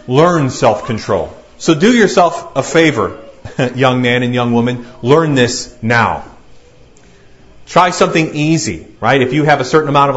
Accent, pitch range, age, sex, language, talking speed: American, 120-175 Hz, 30-49, male, English, 155 wpm